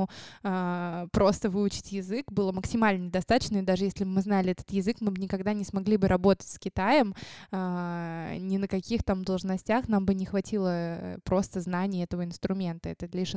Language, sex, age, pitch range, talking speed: Russian, female, 20-39, 190-225 Hz, 165 wpm